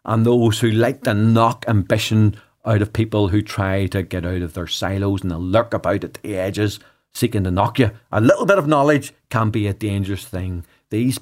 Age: 40-59